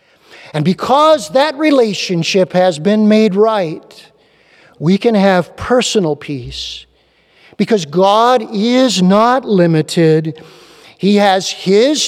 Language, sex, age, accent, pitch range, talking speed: English, male, 50-69, American, 160-225 Hz, 105 wpm